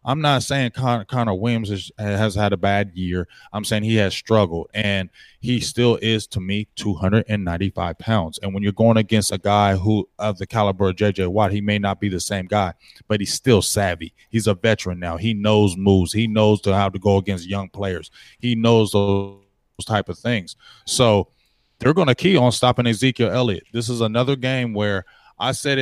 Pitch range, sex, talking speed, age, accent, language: 100-120 Hz, male, 200 wpm, 20-39, American, English